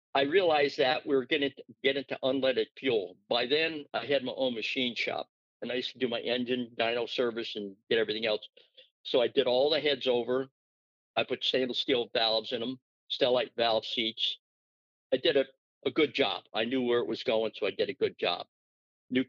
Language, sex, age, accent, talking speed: English, male, 50-69, American, 210 wpm